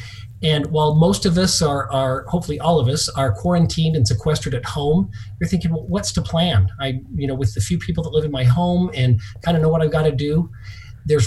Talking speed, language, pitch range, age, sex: 240 wpm, English, 115-155 Hz, 40-59, male